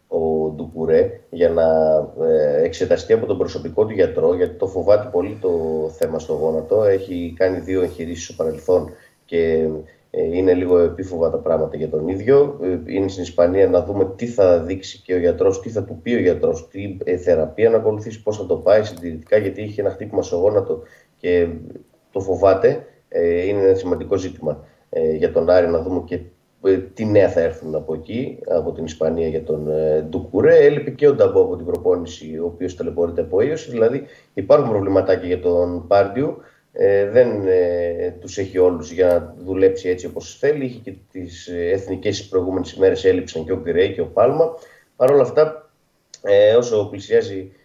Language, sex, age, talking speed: Greek, male, 30-49, 175 wpm